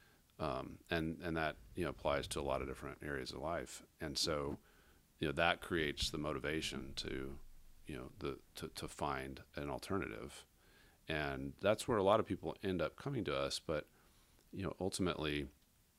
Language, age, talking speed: English, 40-59, 180 wpm